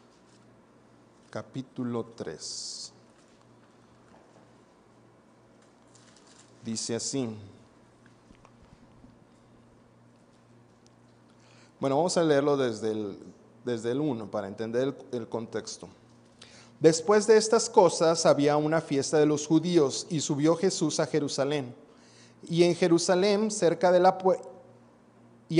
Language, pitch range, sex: Spanish, 125-175 Hz, male